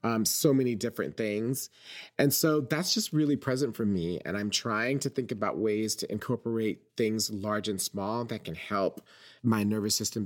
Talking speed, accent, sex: 185 wpm, American, male